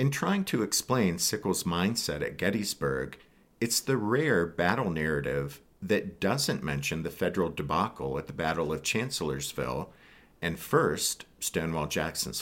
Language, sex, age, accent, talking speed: English, male, 50-69, American, 135 wpm